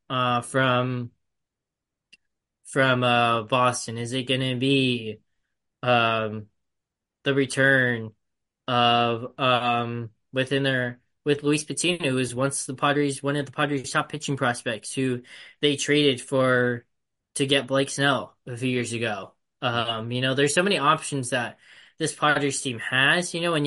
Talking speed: 150 wpm